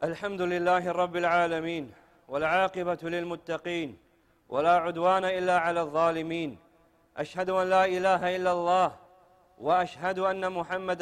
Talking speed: 110 wpm